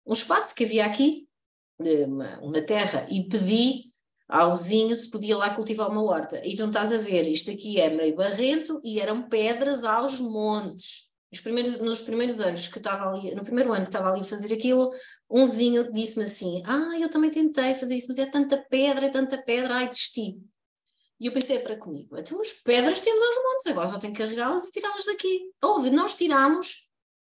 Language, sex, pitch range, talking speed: Portuguese, female, 220-290 Hz, 205 wpm